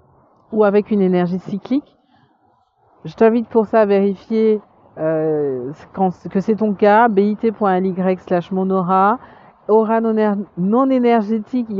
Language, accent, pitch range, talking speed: French, French, 180-220 Hz, 135 wpm